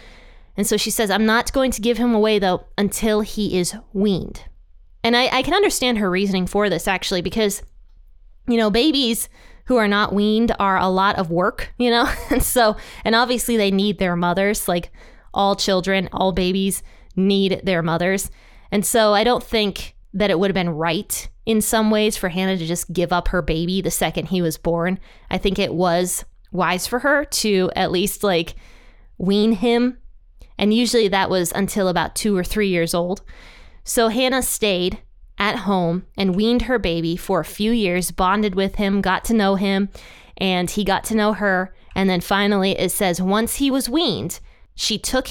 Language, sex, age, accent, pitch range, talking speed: English, female, 20-39, American, 185-220 Hz, 190 wpm